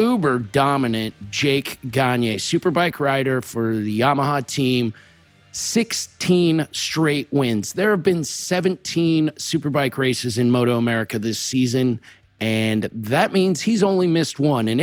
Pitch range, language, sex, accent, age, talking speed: 120-150 Hz, English, male, American, 40-59, 130 wpm